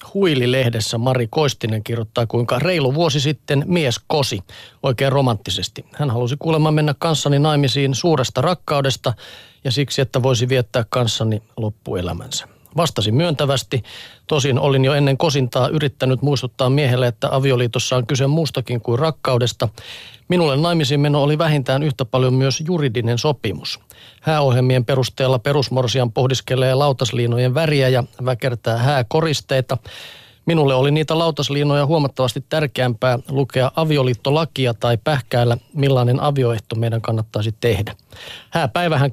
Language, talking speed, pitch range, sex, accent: Finnish, 120 wpm, 125-145 Hz, male, native